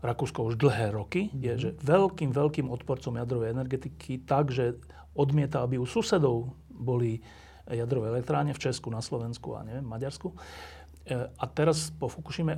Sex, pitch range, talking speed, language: male, 120-150 Hz, 145 wpm, Slovak